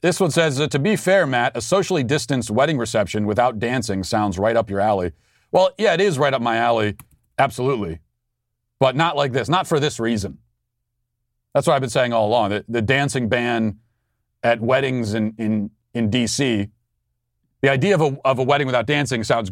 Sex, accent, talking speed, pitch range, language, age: male, American, 195 wpm, 110-135 Hz, English, 40-59